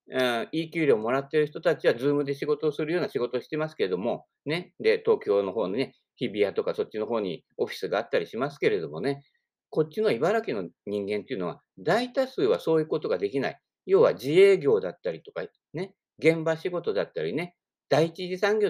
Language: Japanese